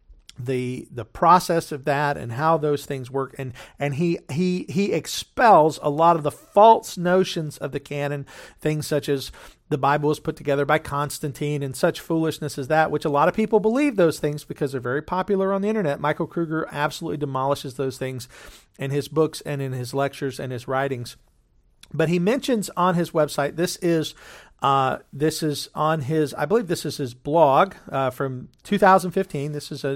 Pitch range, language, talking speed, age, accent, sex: 140-170 Hz, English, 190 wpm, 50-69, American, male